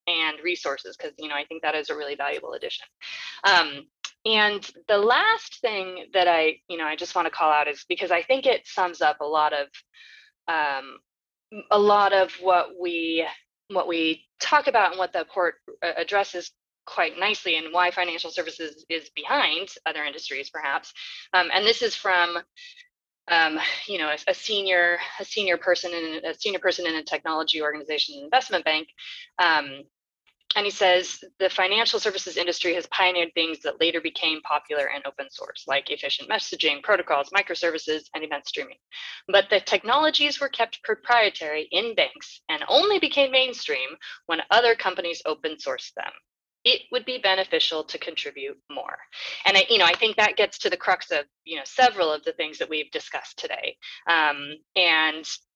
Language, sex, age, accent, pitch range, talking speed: English, female, 20-39, American, 160-255 Hz, 175 wpm